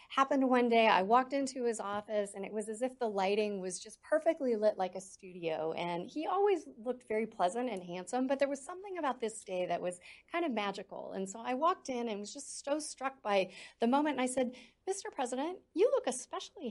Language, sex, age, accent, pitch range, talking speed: English, female, 40-59, American, 185-255 Hz, 225 wpm